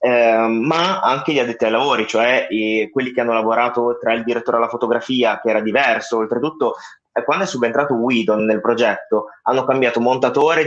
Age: 20-39